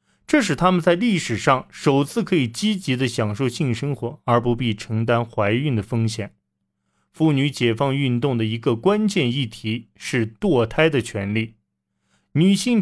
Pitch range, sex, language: 110-160 Hz, male, Chinese